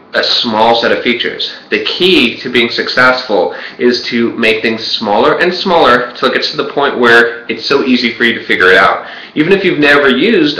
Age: 30-49